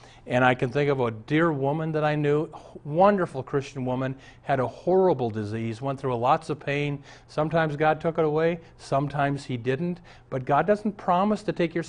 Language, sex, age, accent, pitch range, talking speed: English, male, 40-59, American, 120-165 Hz, 195 wpm